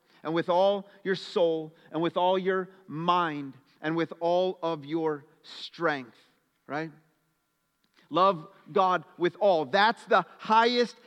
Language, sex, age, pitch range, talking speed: English, male, 40-59, 170-220 Hz, 130 wpm